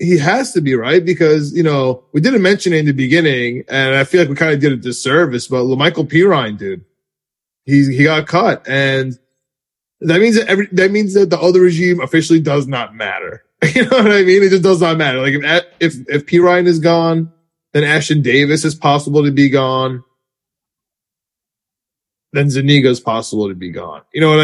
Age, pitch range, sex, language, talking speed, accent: 20-39, 130-165 Hz, male, English, 205 wpm, American